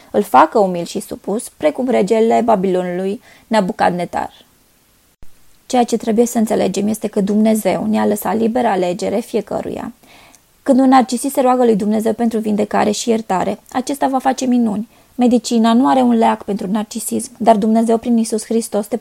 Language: Romanian